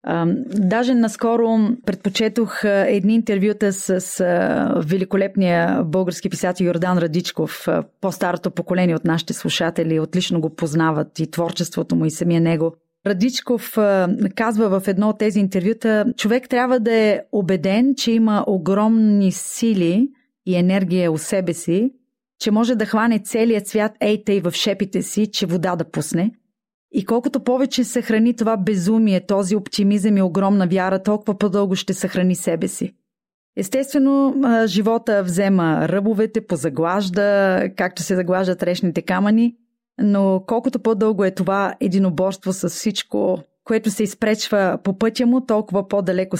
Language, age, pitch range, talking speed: Bulgarian, 30-49, 180-225 Hz, 135 wpm